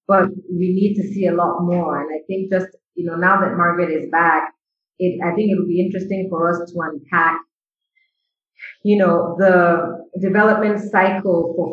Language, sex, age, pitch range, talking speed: English, female, 30-49, 170-195 Hz, 185 wpm